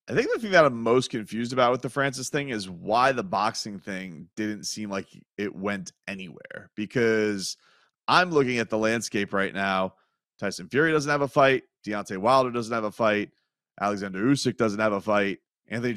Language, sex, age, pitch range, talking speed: English, male, 30-49, 105-140 Hz, 190 wpm